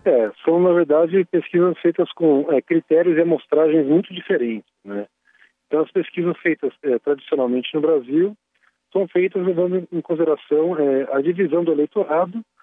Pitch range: 135-180 Hz